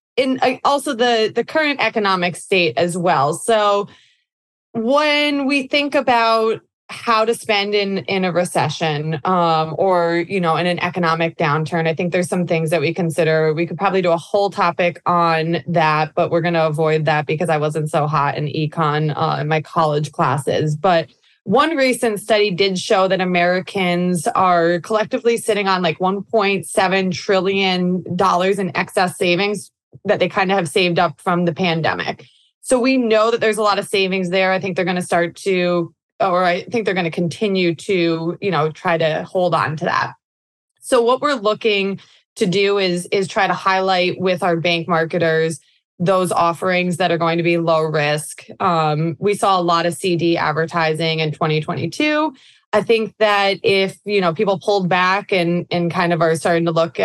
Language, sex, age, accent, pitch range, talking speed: English, female, 20-39, American, 165-200 Hz, 185 wpm